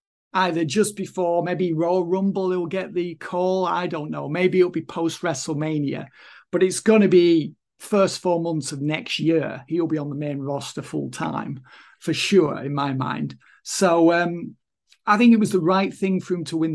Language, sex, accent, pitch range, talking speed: English, male, British, 160-205 Hz, 195 wpm